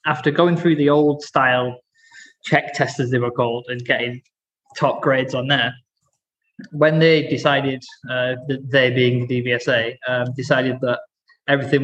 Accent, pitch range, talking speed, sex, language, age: British, 130-165 Hz, 150 wpm, male, English, 20-39